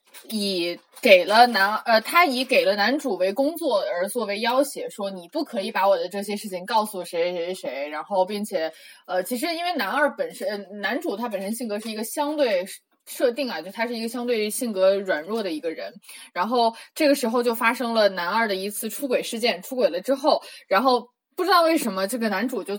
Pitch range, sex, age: 200-270 Hz, female, 20-39